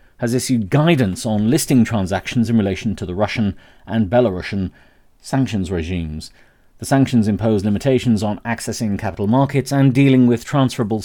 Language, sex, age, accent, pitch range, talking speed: English, male, 40-59, British, 90-120 Hz, 145 wpm